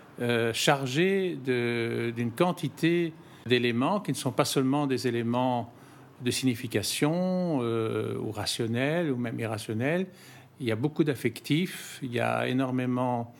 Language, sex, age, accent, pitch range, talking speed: French, male, 50-69, French, 120-150 Hz, 135 wpm